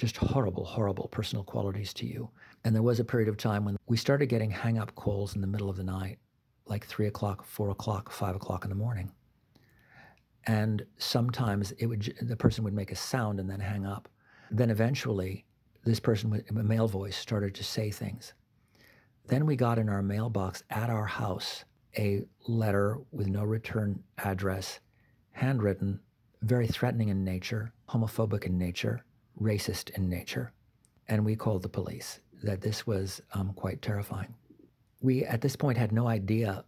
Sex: male